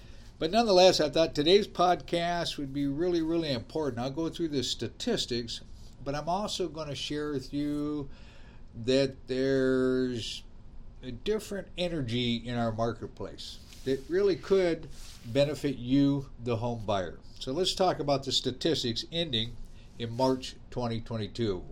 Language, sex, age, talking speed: English, male, 50-69, 140 wpm